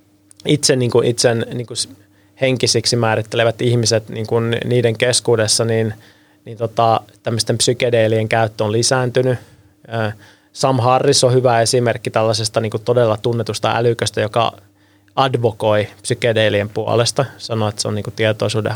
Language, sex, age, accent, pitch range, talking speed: Finnish, male, 20-39, native, 110-125 Hz, 120 wpm